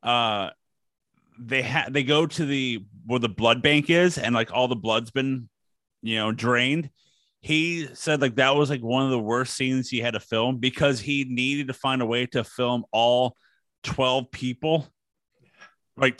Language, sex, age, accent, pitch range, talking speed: English, male, 30-49, American, 115-135 Hz, 180 wpm